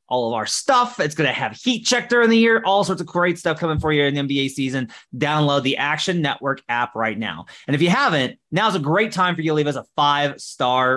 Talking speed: 255 wpm